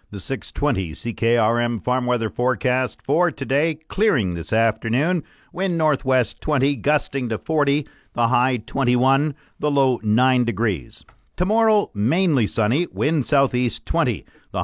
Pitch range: 105-140 Hz